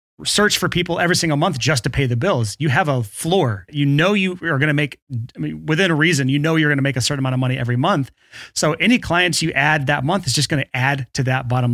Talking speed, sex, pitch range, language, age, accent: 280 wpm, male, 130-160 Hz, English, 30-49, American